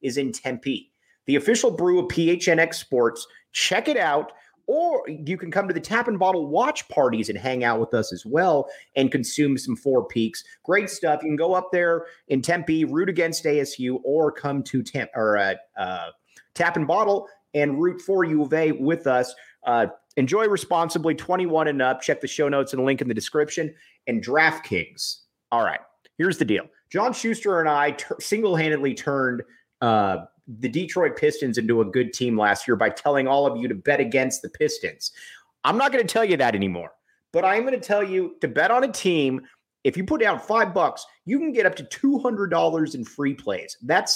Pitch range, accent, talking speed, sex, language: 135-185 Hz, American, 205 wpm, male, English